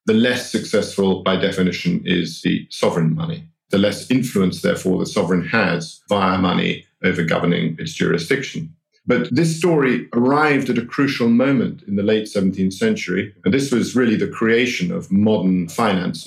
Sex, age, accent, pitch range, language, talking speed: male, 50-69, British, 90-115 Hz, English, 160 wpm